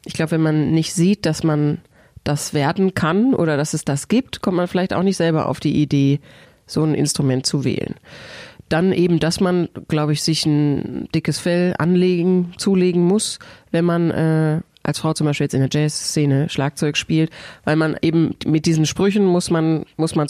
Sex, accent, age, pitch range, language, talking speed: female, German, 30-49, 150-180 Hz, German, 195 wpm